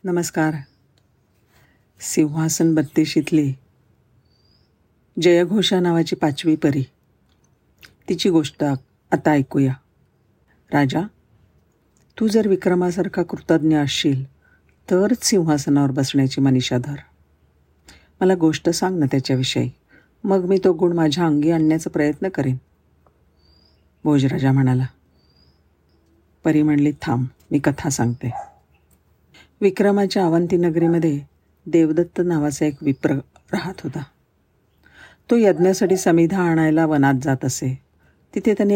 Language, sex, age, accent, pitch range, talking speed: Marathi, female, 50-69, native, 130-170 Hz, 95 wpm